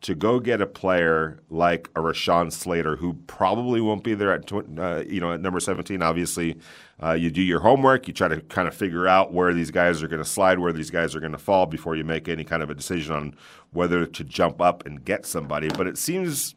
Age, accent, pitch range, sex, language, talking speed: 40-59, American, 80-100 Hz, male, English, 245 wpm